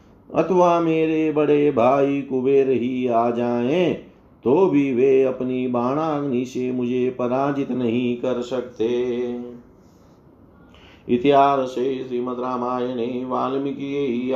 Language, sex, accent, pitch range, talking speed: Hindi, male, native, 120-140 Hz, 90 wpm